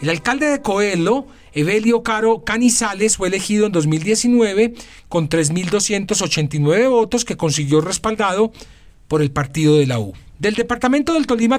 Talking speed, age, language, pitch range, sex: 135 wpm, 40-59, Spanish, 150-220 Hz, male